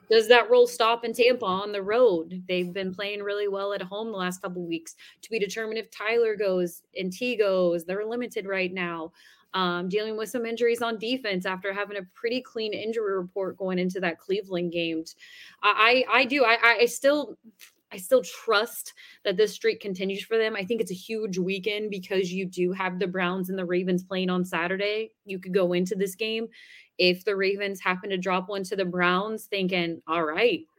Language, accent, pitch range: English, American, 175-215 Hz